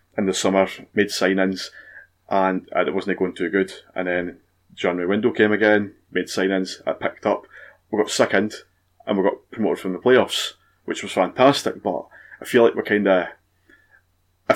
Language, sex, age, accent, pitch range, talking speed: English, male, 20-39, British, 90-100 Hz, 175 wpm